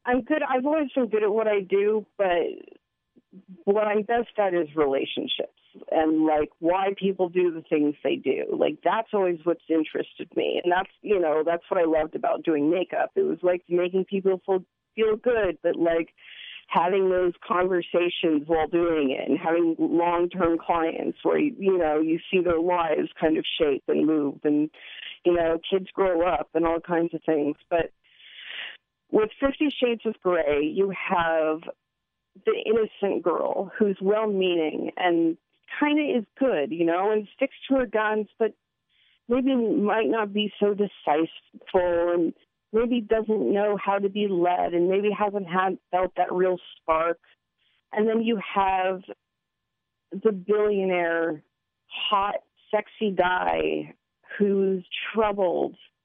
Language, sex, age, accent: English, female, 40-59, American